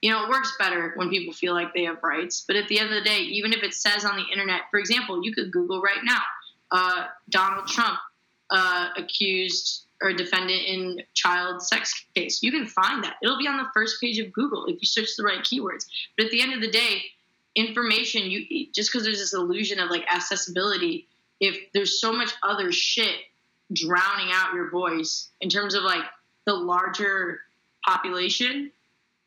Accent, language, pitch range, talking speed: American, English, 185-225 Hz, 200 wpm